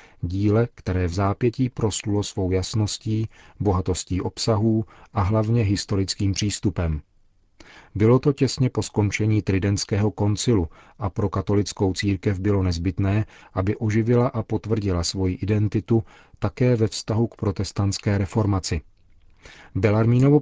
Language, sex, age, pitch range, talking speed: Czech, male, 40-59, 95-110 Hz, 115 wpm